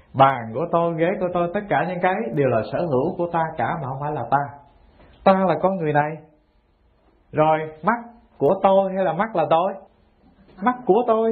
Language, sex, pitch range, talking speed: English, male, 145-200 Hz, 205 wpm